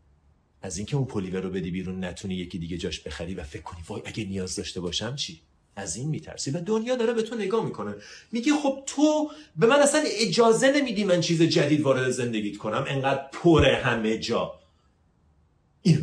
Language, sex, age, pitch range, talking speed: Persian, male, 40-59, 95-140 Hz, 185 wpm